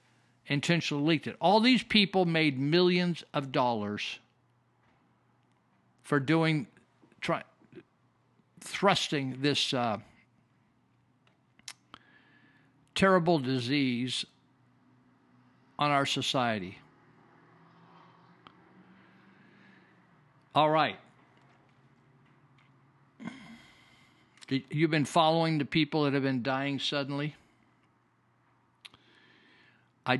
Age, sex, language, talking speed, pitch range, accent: 60-79, male, English, 70 wpm, 120-150 Hz, American